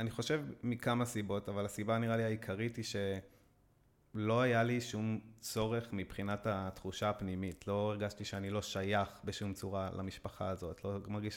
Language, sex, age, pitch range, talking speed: Hebrew, male, 20-39, 100-115 Hz, 155 wpm